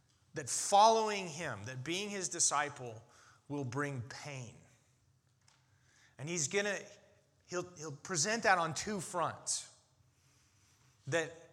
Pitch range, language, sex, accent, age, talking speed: 125-180 Hz, English, male, American, 30-49, 115 wpm